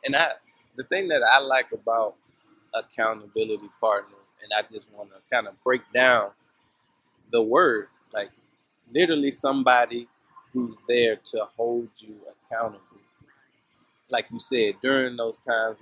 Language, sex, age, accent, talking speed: English, male, 20-39, American, 135 wpm